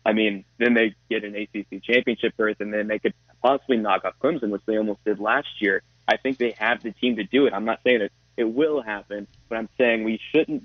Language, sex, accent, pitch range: English, male, American, 105-120 Hz